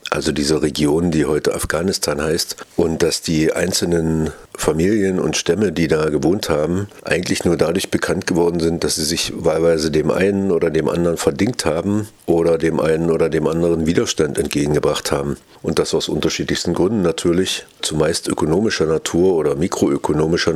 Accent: German